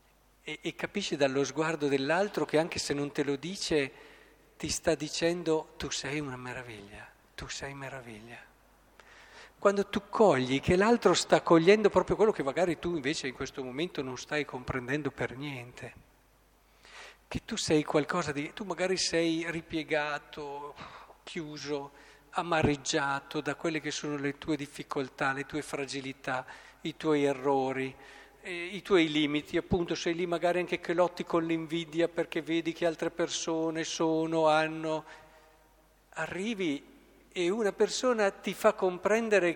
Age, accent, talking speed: 50-69, native, 140 wpm